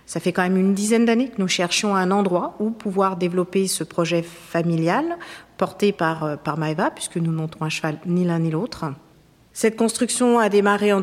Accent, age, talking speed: French, 50-69, 195 wpm